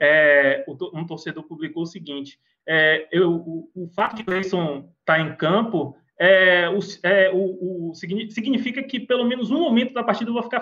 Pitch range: 150-200 Hz